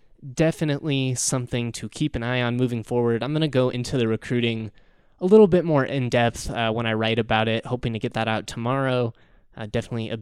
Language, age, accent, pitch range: English, 20-39, American, 115-135 Hz